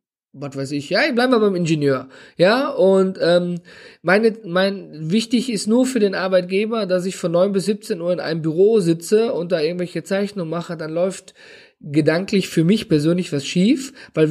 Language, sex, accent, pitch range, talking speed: German, male, German, 170-210 Hz, 190 wpm